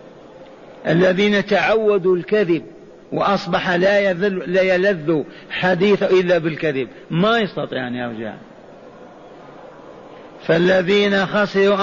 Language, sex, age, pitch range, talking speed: Arabic, male, 50-69, 155-195 Hz, 85 wpm